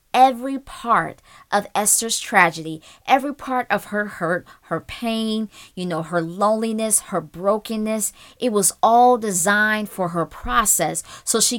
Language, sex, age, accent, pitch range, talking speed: English, female, 20-39, American, 180-230 Hz, 140 wpm